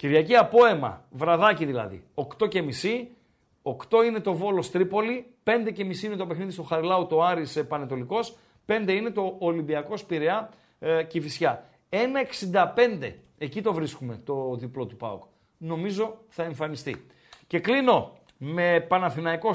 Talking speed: 130 wpm